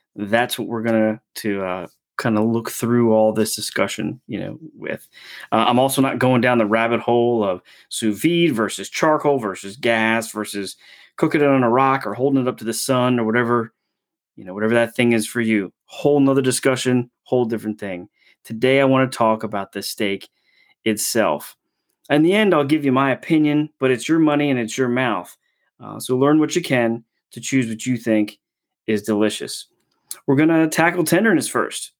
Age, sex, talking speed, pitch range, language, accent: 30-49, male, 195 wpm, 115-155 Hz, English, American